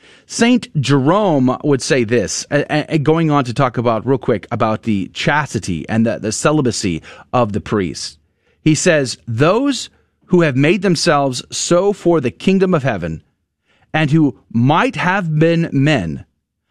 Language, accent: English, American